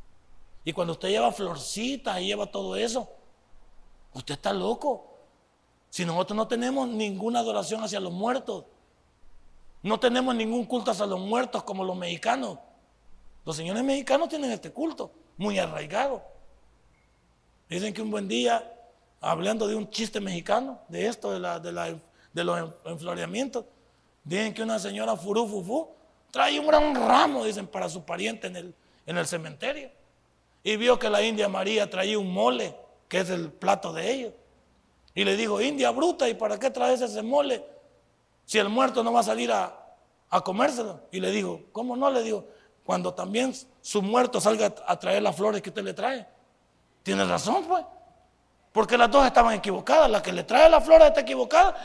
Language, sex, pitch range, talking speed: Spanish, male, 190-255 Hz, 170 wpm